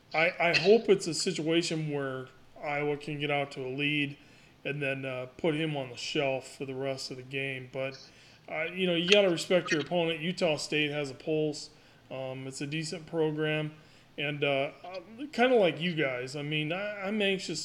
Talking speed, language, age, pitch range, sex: 205 wpm, English, 30-49, 140-160 Hz, male